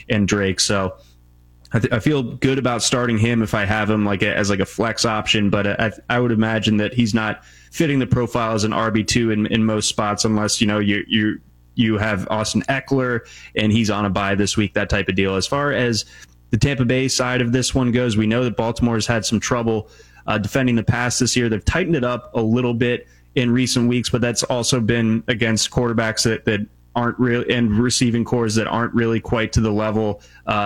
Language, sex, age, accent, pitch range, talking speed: English, male, 20-39, American, 105-125 Hz, 230 wpm